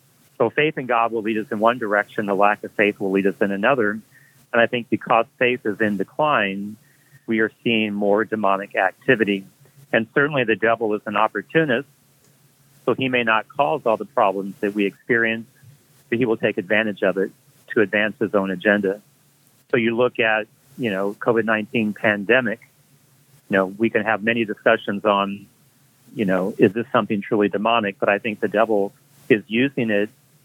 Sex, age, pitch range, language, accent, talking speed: male, 40-59, 105-130 Hz, English, American, 185 wpm